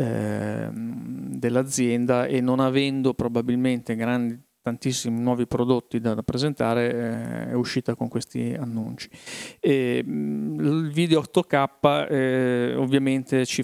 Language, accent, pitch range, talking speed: Italian, native, 115-130 Hz, 100 wpm